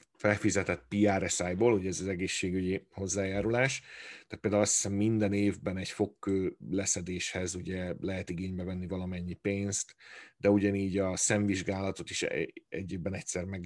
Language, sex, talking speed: Hungarian, male, 135 wpm